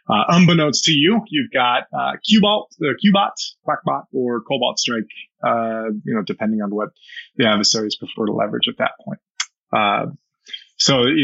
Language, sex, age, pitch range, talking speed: English, male, 20-39, 115-155 Hz, 175 wpm